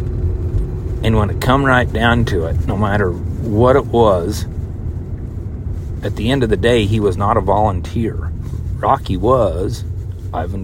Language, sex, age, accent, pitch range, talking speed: English, male, 40-59, American, 90-115 Hz, 150 wpm